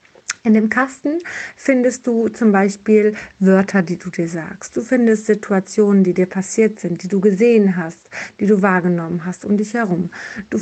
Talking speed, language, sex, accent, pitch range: 175 wpm, German, female, German, 190-225 Hz